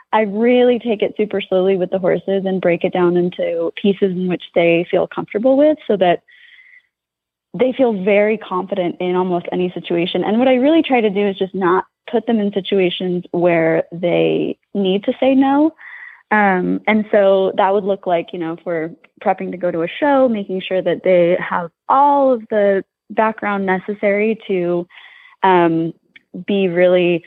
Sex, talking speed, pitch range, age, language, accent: female, 180 wpm, 180-240 Hz, 20-39, English, American